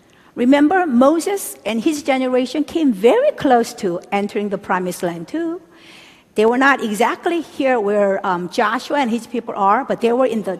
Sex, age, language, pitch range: female, 50-69, Korean, 200-275 Hz